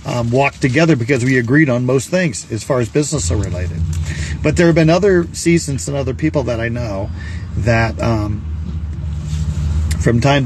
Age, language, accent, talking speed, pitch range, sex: 40-59, English, American, 180 wpm, 105-135 Hz, male